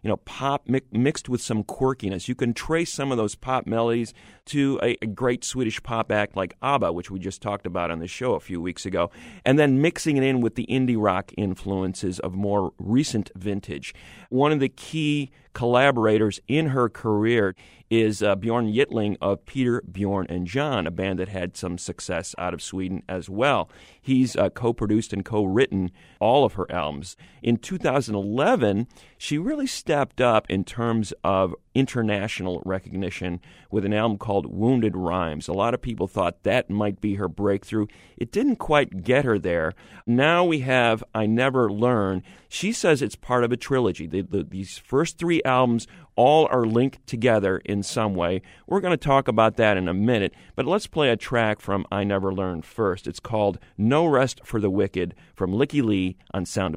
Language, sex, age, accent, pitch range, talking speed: English, male, 40-59, American, 95-125 Hz, 185 wpm